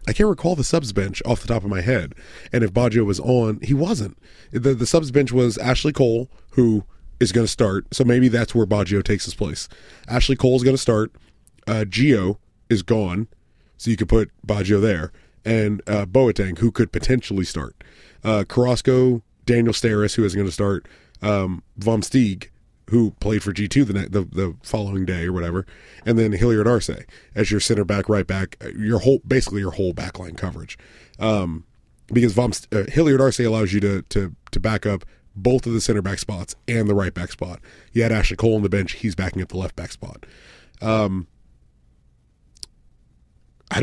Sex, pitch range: male, 95-120 Hz